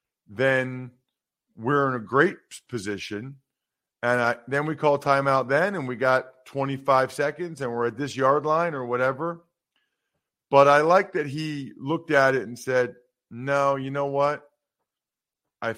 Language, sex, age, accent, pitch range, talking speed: English, male, 40-59, American, 110-140 Hz, 155 wpm